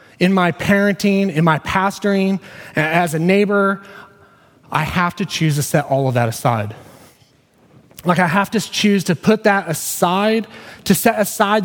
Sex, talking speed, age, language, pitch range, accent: male, 160 wpm, 30-49, English, 130-180 Hz, American